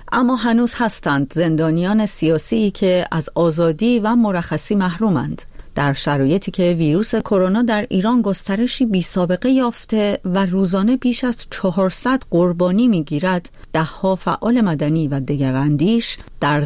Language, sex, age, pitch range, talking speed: Persian, female, 40-59, 150-205 Hz, 125 wpm